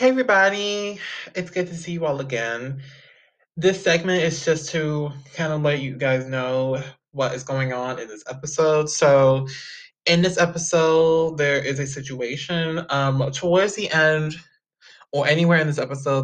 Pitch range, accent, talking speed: 130-165 Hz, American, 165 wpm